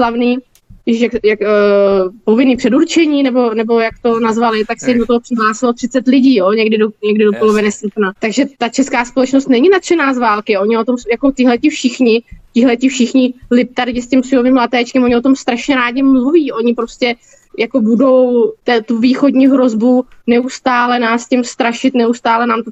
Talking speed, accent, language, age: 170 wpm, native, Czech, 20-39